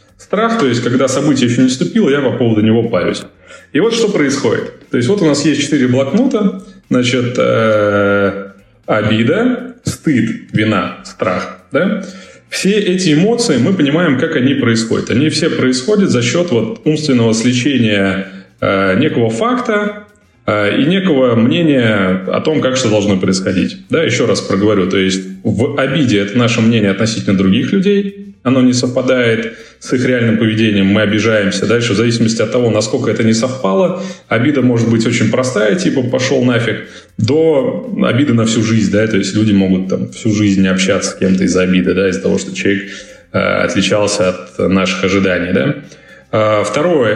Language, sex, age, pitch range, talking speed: Russian, male, 20-39, 100-130 Hz, 160 wpm